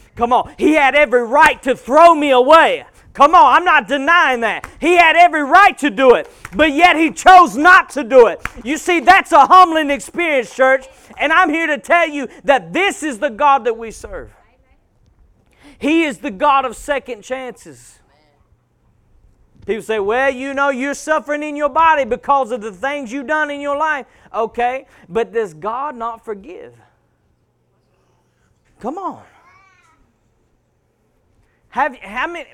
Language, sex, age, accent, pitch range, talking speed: English, male, 40-59, American, 180-300 Hz, 165 wpm